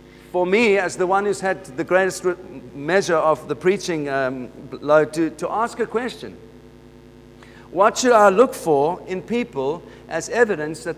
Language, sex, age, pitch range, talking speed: English, male, 50-69, 135-190 Hz, 160 wpm